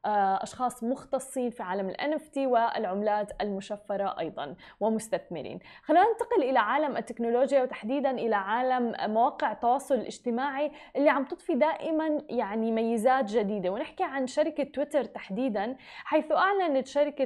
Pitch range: 230-290 Hz